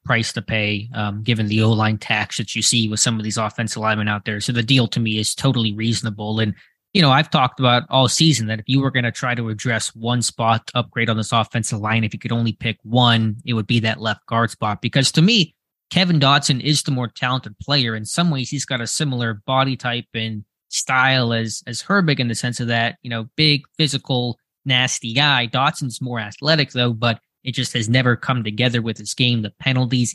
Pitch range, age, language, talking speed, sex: 110-130 Hz, 20-39, English, 230 wpm, male